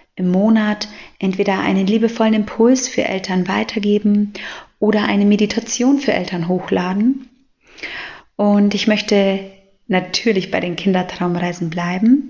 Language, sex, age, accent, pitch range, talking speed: German, female, 30-49, German, 185-225 Hz, 110 wpm